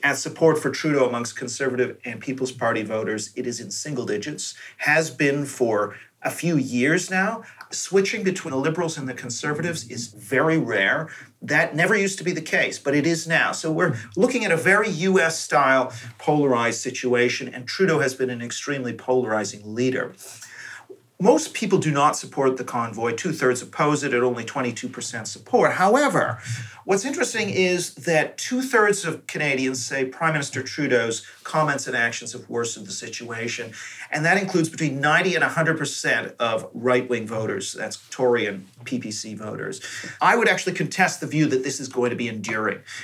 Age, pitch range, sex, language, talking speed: 40-59, 120-165 Hz, male, English, 170 wpm